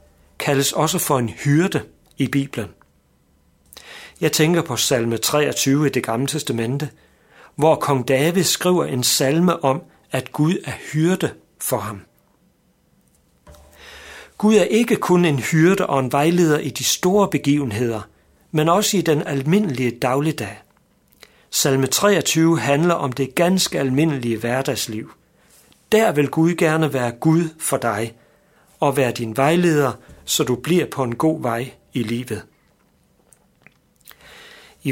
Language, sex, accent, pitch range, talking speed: Danish, male, native, 120-165 Hz, 135 wpm